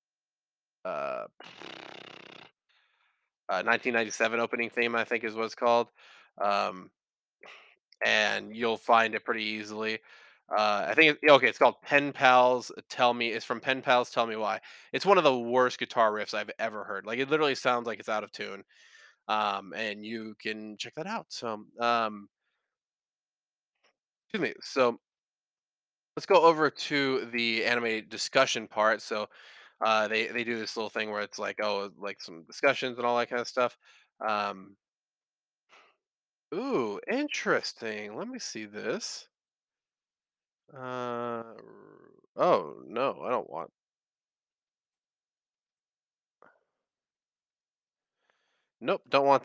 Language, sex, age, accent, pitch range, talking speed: English, male, 20-39, American, 110-125 Hz, 135 wpm